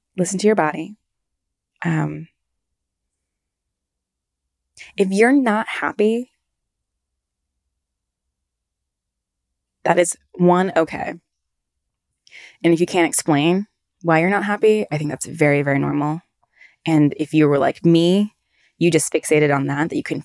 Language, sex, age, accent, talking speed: English, female, 20-39, American, 125 wpm